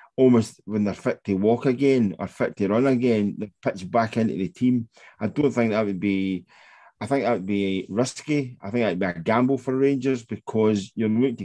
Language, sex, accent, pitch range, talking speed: English, male, British, 100-120 Hz, 220 wpm